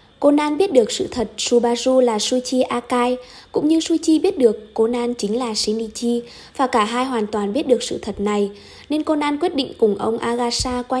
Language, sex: Vietnamese, female